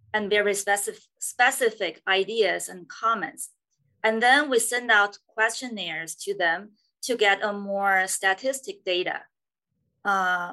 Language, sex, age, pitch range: English, female, 20-39, 190-225 Hz